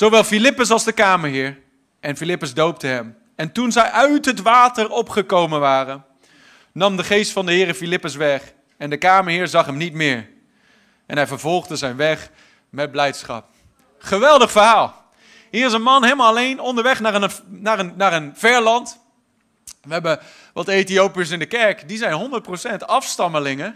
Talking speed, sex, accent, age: 160 wpm, male, Dutch, 30-49